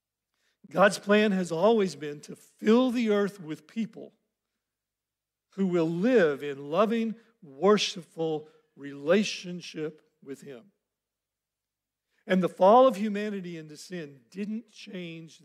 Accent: American